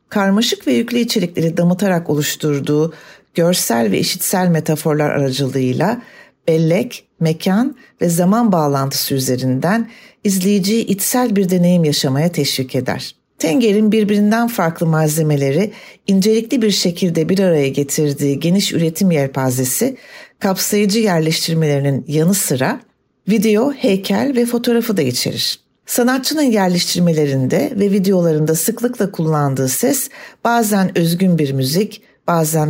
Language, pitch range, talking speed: Turkish, 145-210 Hz, 110 wpm